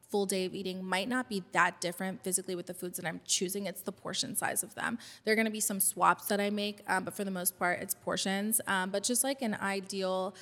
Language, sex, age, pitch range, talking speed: English, female, 20-39, 185-200 Hz, 265 wpm